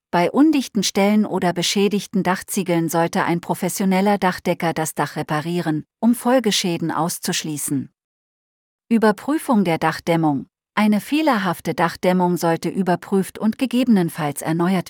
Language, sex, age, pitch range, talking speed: German, female, 40-59, 165-210 Hz, 110 wpm